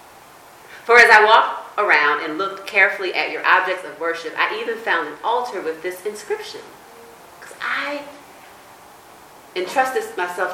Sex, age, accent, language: female, 40-59, American, English